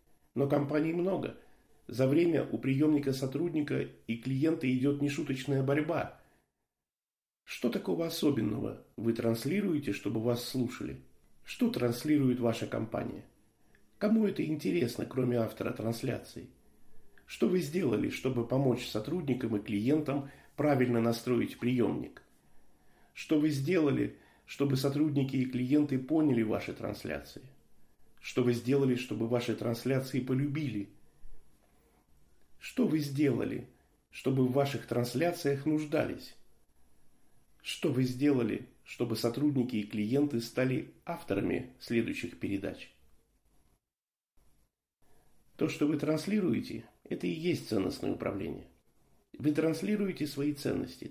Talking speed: 105 wpm